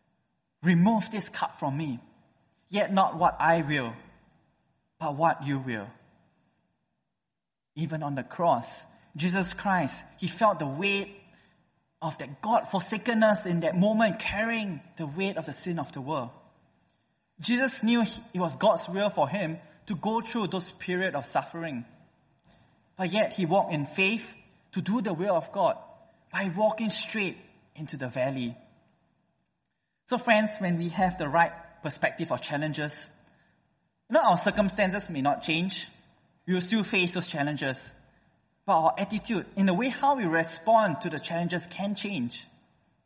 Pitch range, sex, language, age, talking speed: 160-210 Hz, male, English, 20-39, 150 wpm